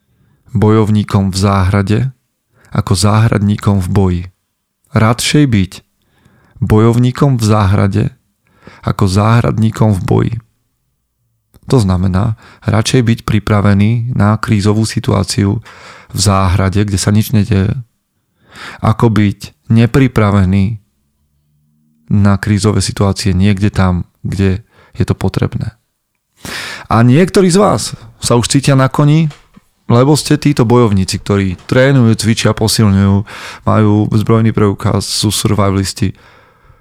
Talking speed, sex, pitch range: 105 wpm, male, 100-115 Hz